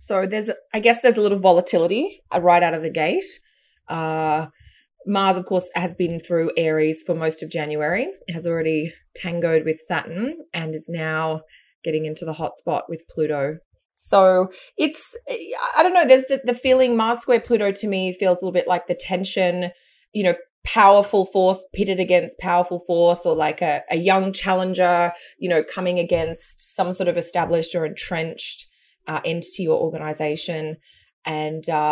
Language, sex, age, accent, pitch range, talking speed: English, female, 20-39, Australian, 165-200 Hz, 170 wpm